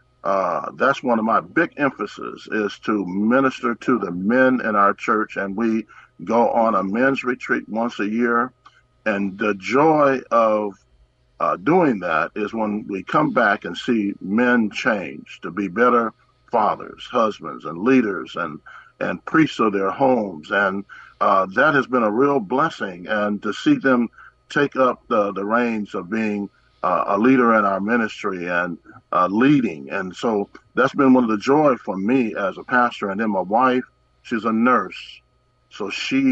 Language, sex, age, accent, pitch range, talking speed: English, male, 50-69, American, 105-125 Hz, 175 wpm